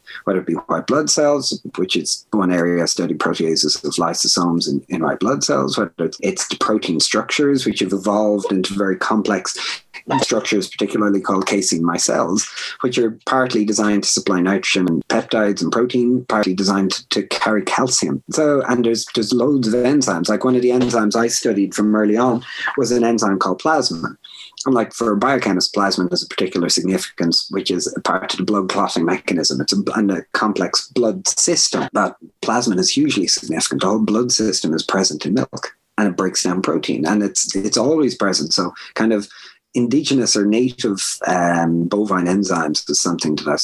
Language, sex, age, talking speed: English, male, 30-49, 185 wpm